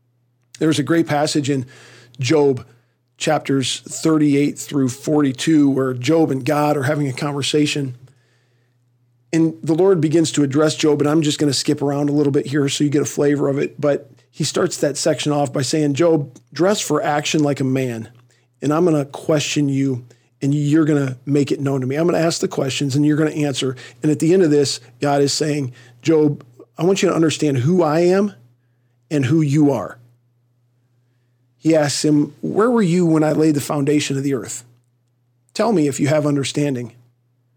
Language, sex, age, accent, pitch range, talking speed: English, male, 40-59, American, 125-155 Hz, 200 wpm